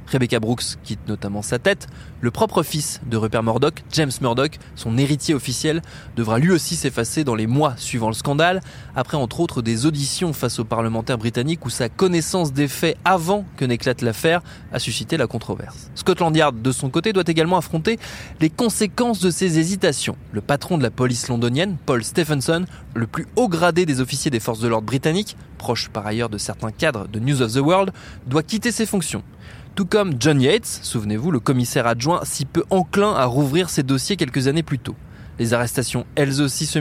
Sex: male